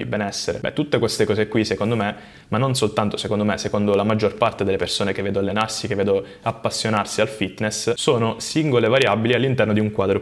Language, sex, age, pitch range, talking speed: Italian, male, 20-39, 105-120 Hz, 200 wpm